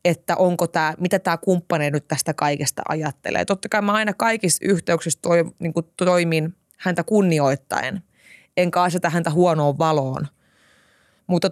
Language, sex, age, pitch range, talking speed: Finnish, female, 20-39, 160-190 Hz, 135 wpm